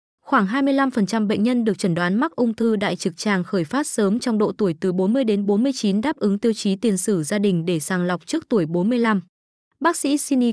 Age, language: 20-39, Vietnamese